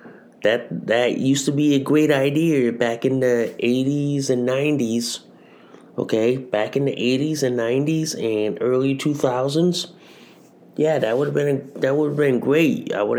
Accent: American